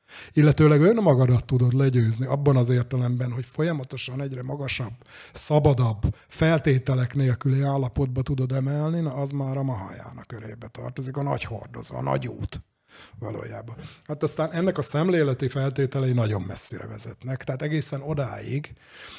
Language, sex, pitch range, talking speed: Hungarian, male, 125-145 Hz, 135 wpm